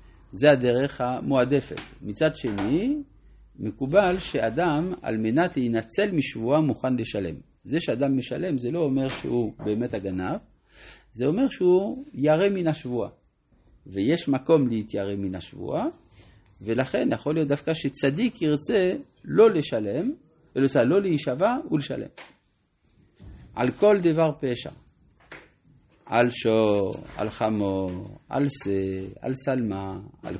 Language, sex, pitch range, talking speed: Hebrew, male, 105-150 Hz, 115 wpm